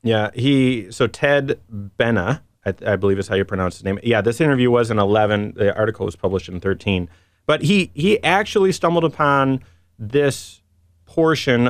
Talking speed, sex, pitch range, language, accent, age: 175 wpm, male, 100-135 Hz, English, American, 30-49